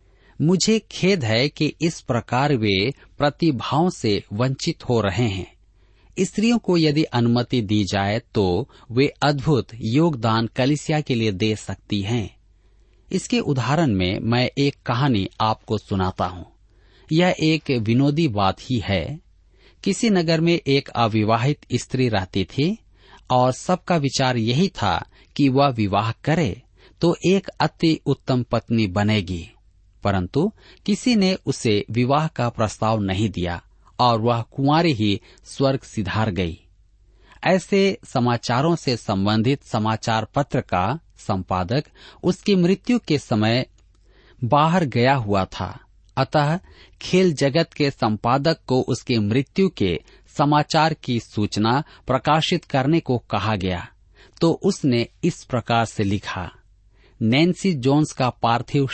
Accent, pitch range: native, 105-150 Hz